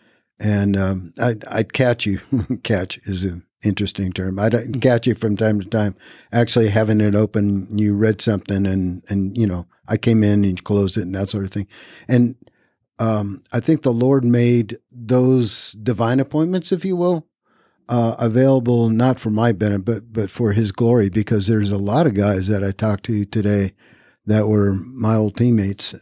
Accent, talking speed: American, 185 wpm